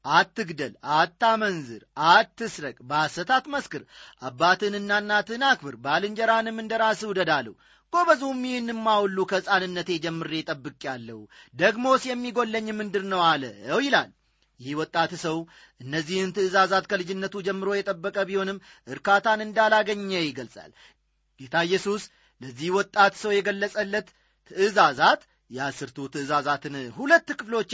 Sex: male